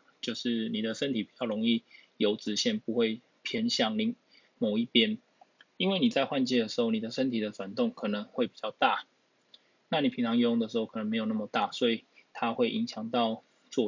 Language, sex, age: Chinese, male, 20-39